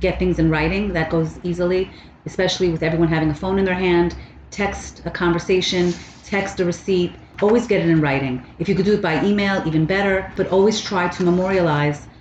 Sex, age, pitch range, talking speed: female, 30-49, 160-200 Hz, 200 wpm